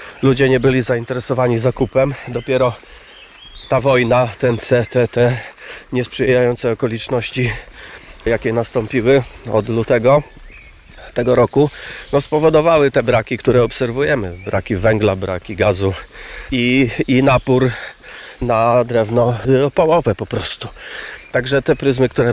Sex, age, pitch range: male, 30-49, 115-140 Hz